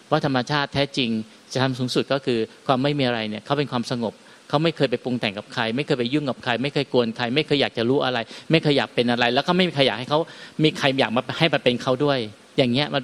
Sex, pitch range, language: male, 120-155 Hz, Thai